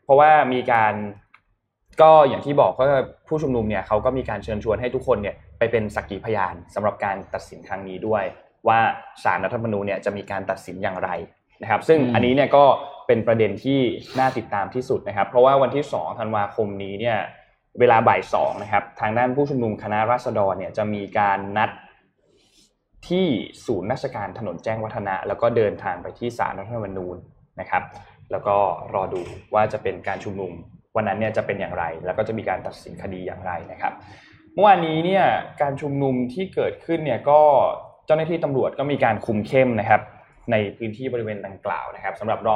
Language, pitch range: Thai, 100-140 Hz